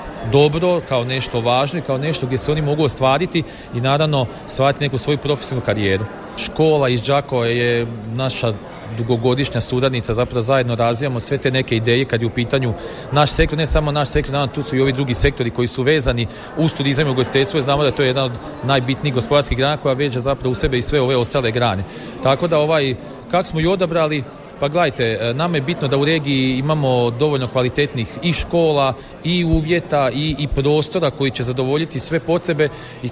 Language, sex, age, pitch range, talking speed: Croatian, male, 40-59, 125-150 Hz, 195 wpm